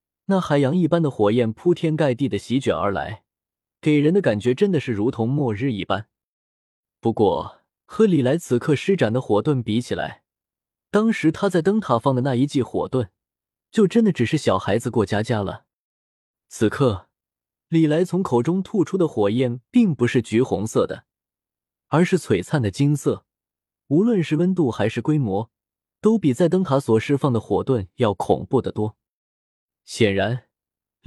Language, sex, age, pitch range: Chinese, male, 20-39, 110-160 Hz